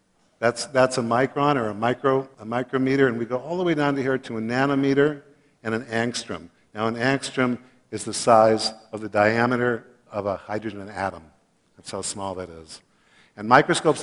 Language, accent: Chinese, American